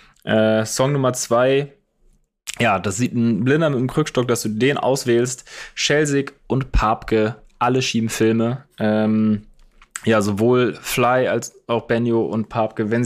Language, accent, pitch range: German, German, 110-125 Hz